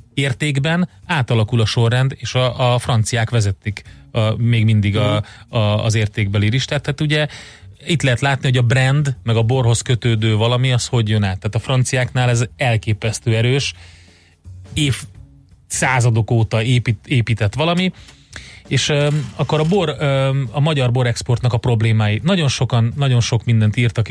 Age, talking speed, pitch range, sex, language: 30-49, 145 wpm, 110-130 Hz, male, Hungarian